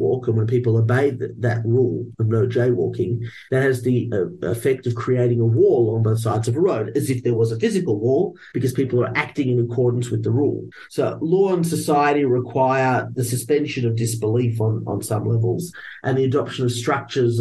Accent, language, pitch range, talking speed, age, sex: Australian, English, 115-130 Hz, 205 wpm, 40-59, male